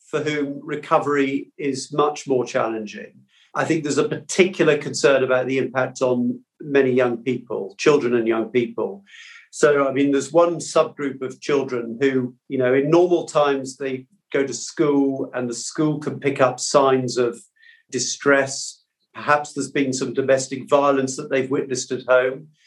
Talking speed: 165 wpm